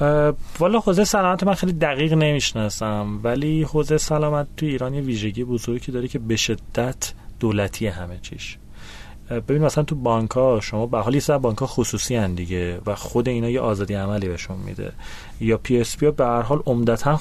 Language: Persian